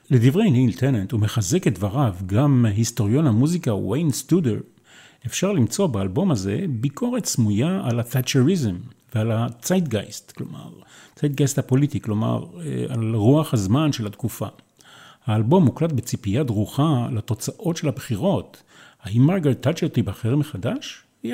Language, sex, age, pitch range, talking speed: Hebrew, male, 40-59, 110-150 Hz, 125 wpm